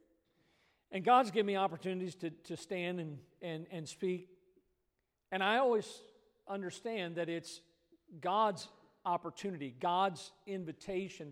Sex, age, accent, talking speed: male, 50-69, American, 115 wpm